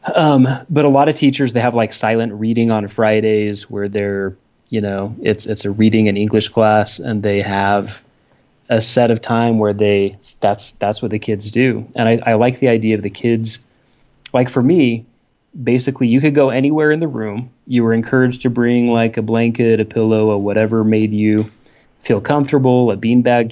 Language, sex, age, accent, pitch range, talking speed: English, male, 20-39, American, 105-125 Hz, 195 wpm